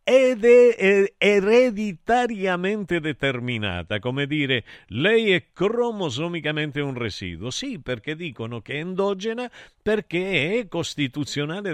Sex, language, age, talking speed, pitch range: male, Italian, 50-69, 100 wpm, 125-180 Hz